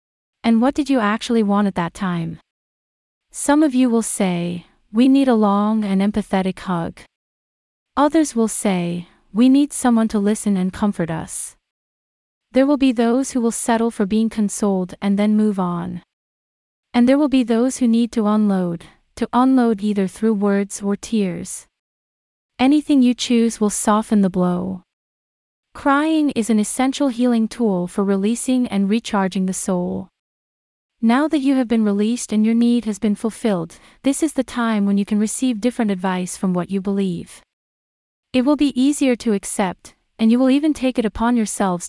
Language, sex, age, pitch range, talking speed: English, female, 30-49, 195-245 Hz, 175 wpm